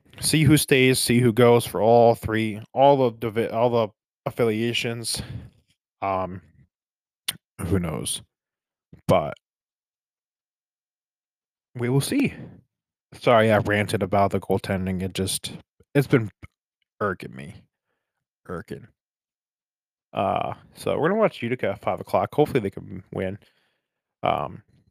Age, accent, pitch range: 20-39, American, 100-125 Hz